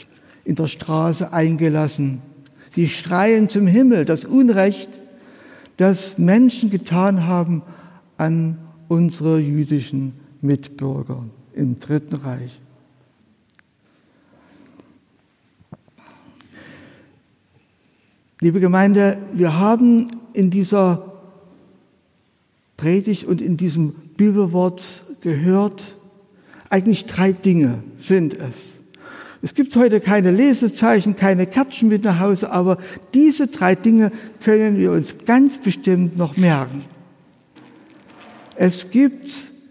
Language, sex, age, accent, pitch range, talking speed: German, male, 60-79, German, 165-220 Hz, 90 wpm